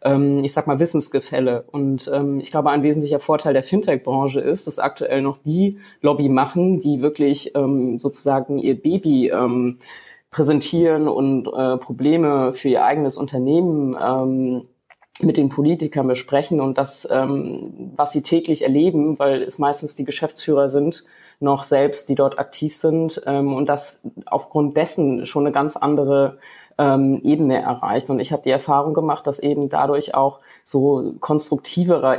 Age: 20-39